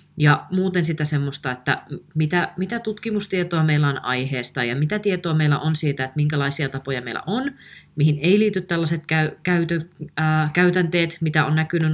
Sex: female